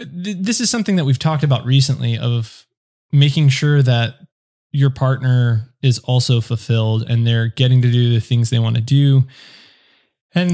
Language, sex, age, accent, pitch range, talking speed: English, male, 20-39, American, 125-150 Hz, 165 wpm